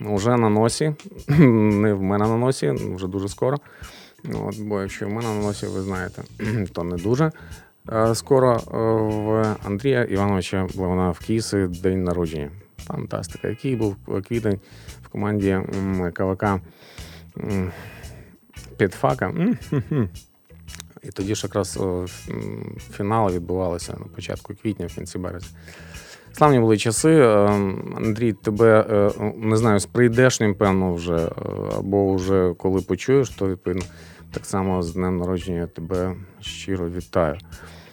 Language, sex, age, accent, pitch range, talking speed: Ukrainian, male, 30-49, native, 90-110 Hz, 120 wpm